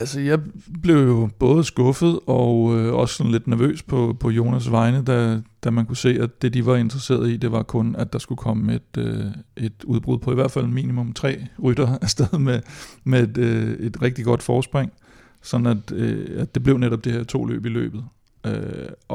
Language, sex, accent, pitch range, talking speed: Danish, male, native, 115-125 Hz, 215 wpm